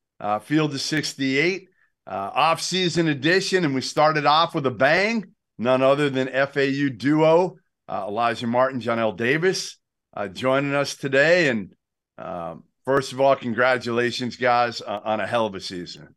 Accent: American